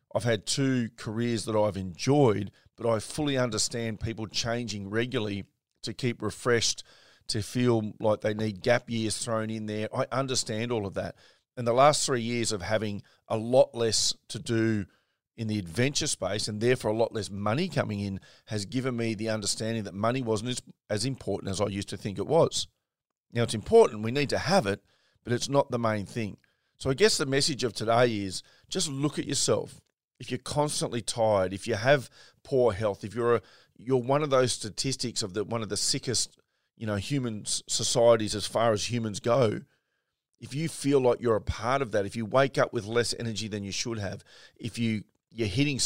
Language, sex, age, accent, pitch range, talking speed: English, male, 40-59, Australian, 105-125 Hz, 205 wpm